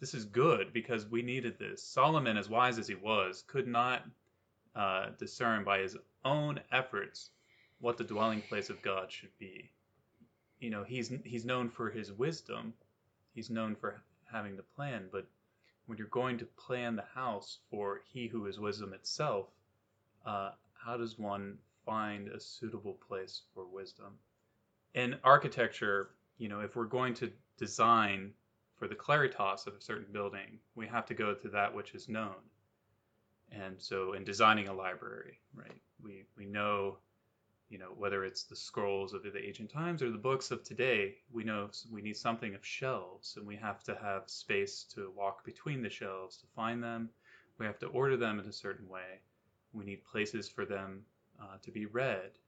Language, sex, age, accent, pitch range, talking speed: English, male, 20-39, American, 100-115 Hz, 180 wpm